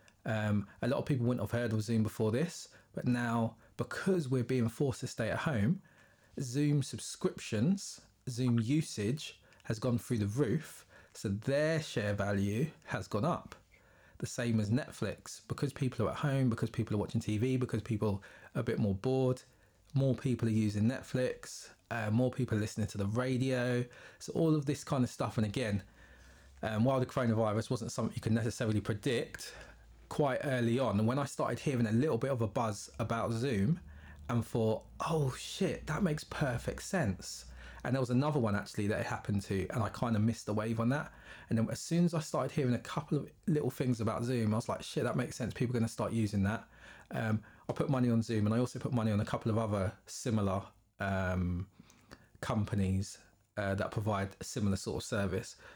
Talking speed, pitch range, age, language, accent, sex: 205 wpm, 105-130 Hz, 20-39, English, British, male